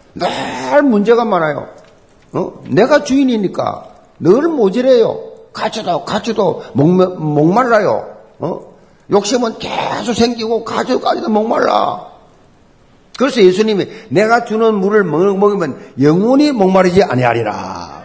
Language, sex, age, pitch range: Korean, male, 50-69, 145-230 Hz